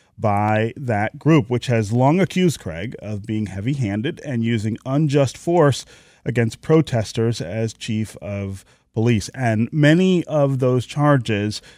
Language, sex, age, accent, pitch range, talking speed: English, male, 30-49, American, 105-140 Hz, 130 wpm